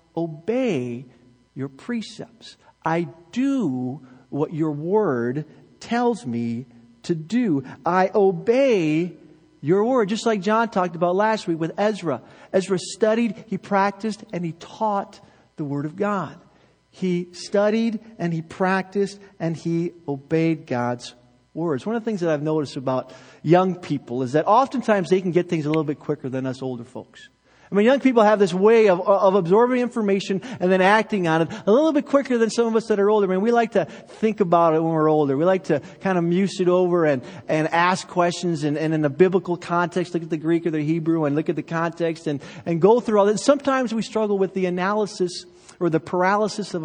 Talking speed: 200 wpm